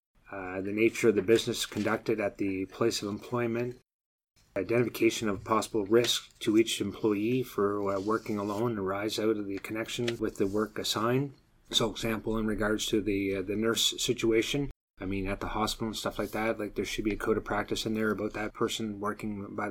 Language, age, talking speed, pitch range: English, 30-49, 200 wpm, 105-120 Hz